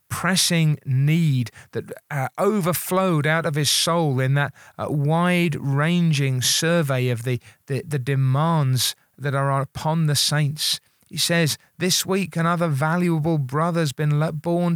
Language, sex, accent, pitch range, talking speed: English, male, British, 140-175 Hz, 135 wpm